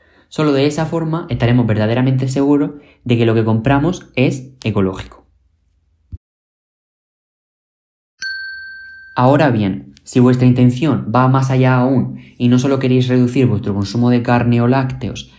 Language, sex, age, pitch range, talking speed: Spanish, male, 20-39, 105-135 Hz, 135 wpm